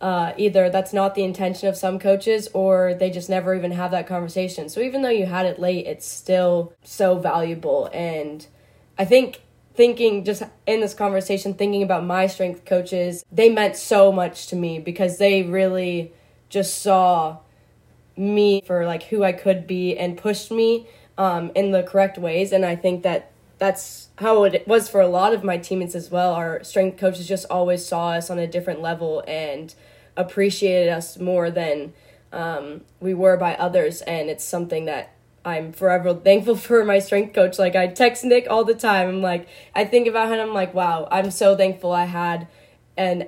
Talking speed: 190 wpm